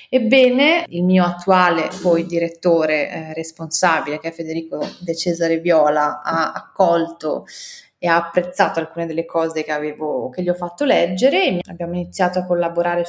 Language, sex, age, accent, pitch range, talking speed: Italian, female, 20-39, native, 165-205 Hz, 150 wpm